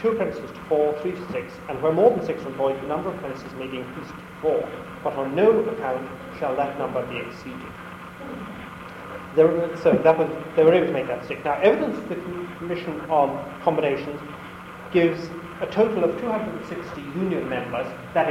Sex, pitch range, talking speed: male, 155-185 Hz, 190 wpm